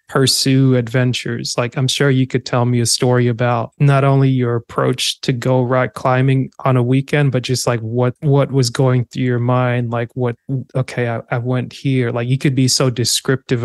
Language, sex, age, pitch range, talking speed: English, male, 20-39, 120-135 Hz, 200 wpm